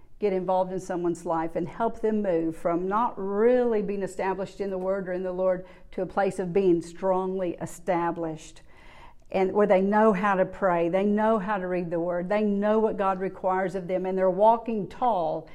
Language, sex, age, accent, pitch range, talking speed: English, female, 50-69, American, 180-215 Hz, 205 wpm